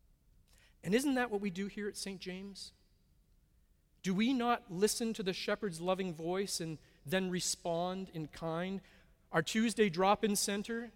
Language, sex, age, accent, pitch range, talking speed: English, male, 40-59, American, 160-205 Hz, 155 wpm